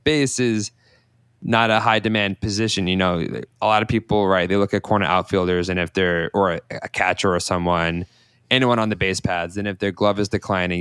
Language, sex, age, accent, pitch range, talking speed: English, male, 20-39, American, 95-115 Hz, 215 wpm